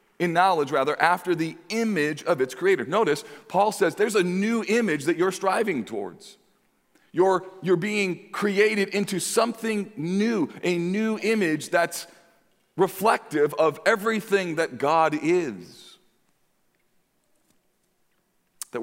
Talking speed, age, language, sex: 120 wpm, 40-59, English, male